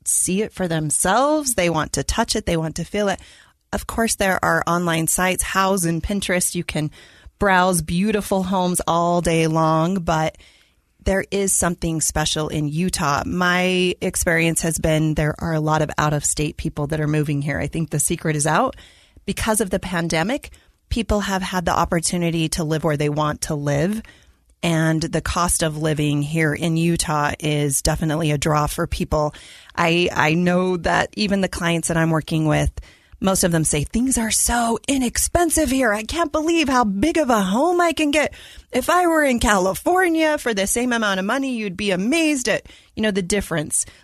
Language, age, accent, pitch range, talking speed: English, 30-49, American, 160-210 Hz, 190 wpm